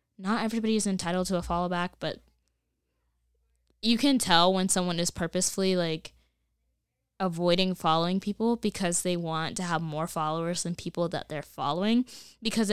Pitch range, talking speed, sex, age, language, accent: 165-215 Hz, 155 wpm, female, 10-29, English, American